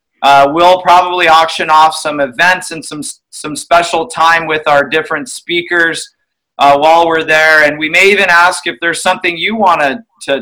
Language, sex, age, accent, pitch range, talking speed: English, male, 30-49, American, 145-170 Hz, 180 wpm